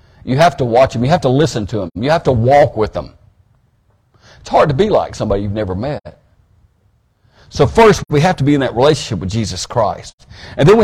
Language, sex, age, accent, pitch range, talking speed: English, male, 60-79, American, 115-165 Hz, 225 wpm